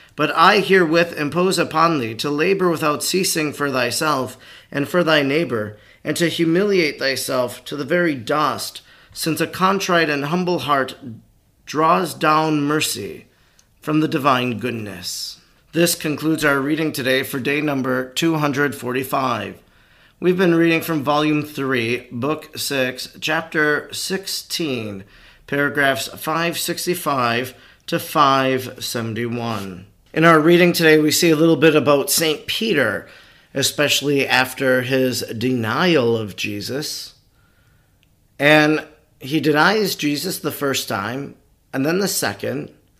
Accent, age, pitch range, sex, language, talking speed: American, 30-49, 125-160 Hz, male, English, 125 wpm